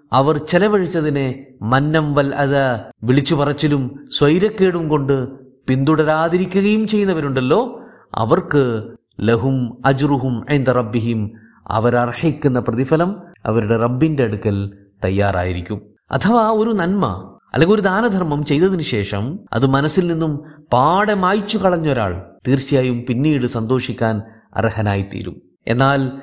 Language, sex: Malayalam, male